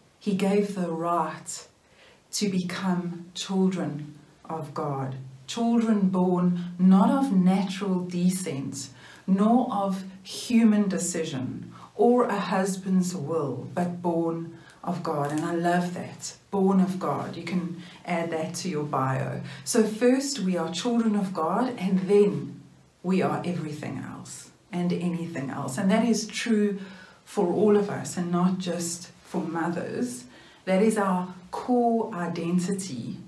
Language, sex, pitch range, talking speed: English, female, 165-195 Hz, 135 wpm